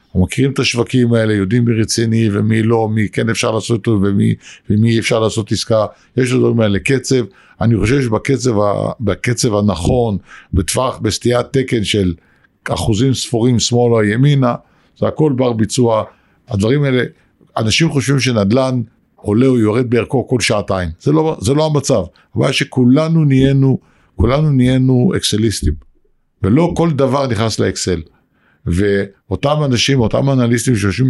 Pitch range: 105-130 Hz